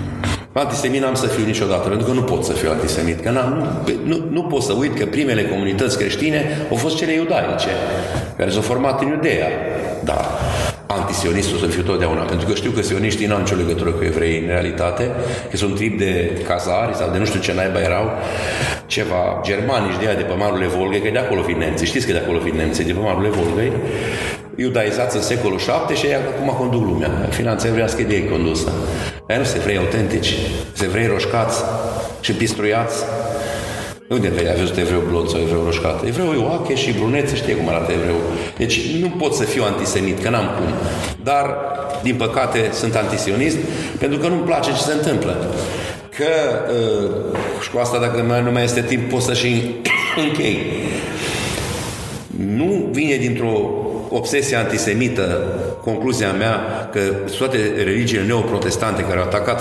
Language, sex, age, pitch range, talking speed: Romanian, male, 40-59, 90-125 Hz, 175 wpm